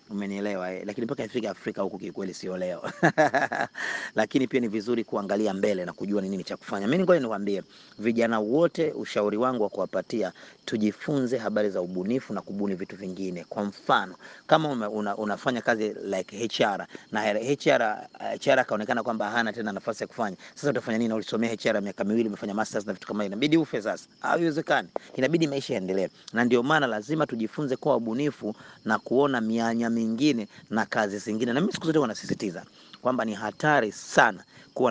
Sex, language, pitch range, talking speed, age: male, Swahili, 105-145 Hz, 175 wpm, 30-49